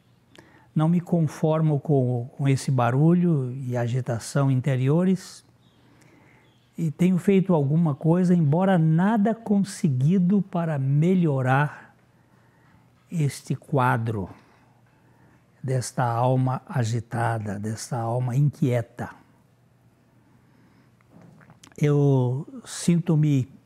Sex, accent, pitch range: male, Brazilian, 125-160 Hz